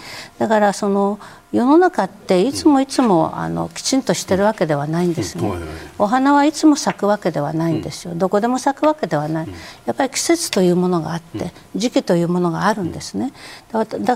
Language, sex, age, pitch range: Japanese, female, 50-69, 165-245 Hz